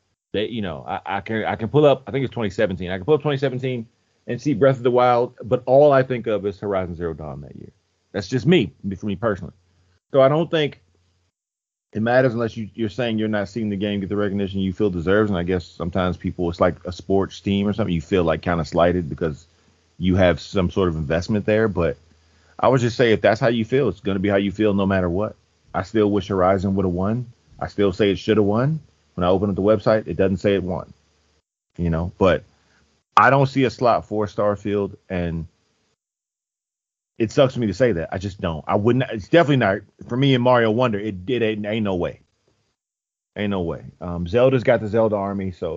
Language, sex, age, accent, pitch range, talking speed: English, male, 30-49, American, 90-120 Hz, 235 wpm